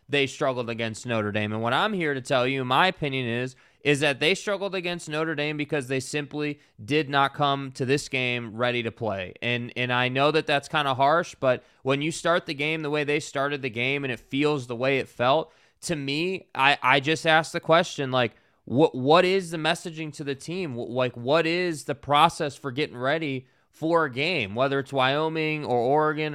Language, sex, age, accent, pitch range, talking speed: English, male, 20-39, American, 130-155 Hz, 215 wpm